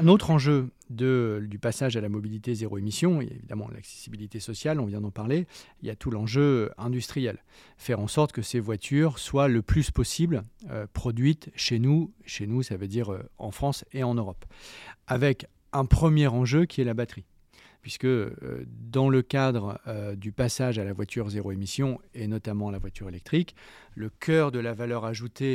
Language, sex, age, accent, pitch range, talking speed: French, male, 40-59, French, 105-135 Hz, 195 wpm